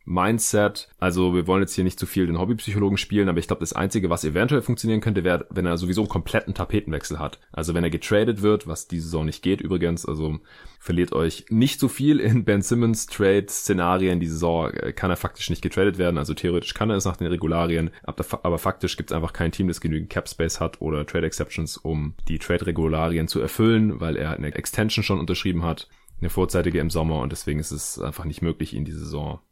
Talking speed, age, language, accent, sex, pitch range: 215 wpm, 30-49, German, German, male, 80-100 Hz